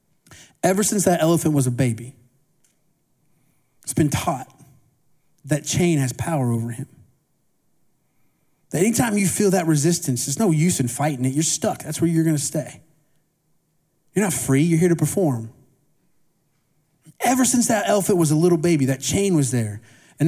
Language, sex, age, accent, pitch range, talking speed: English, male, 30-49, American, 140-190 Hz, 165 wpm